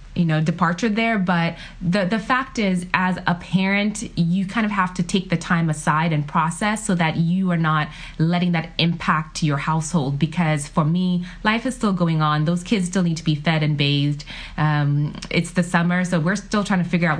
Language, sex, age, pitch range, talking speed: English, female, 20-39, 155-185 Hz, 215 wpm